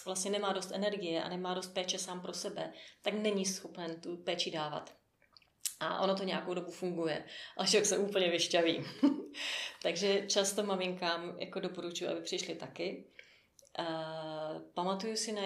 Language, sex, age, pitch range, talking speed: Czech, female, 30-49, 175-195 Hz, 155 wpm